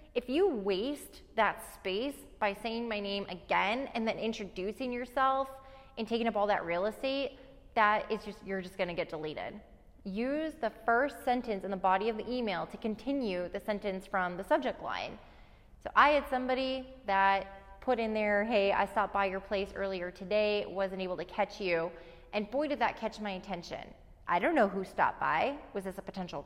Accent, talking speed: American, 195 wpm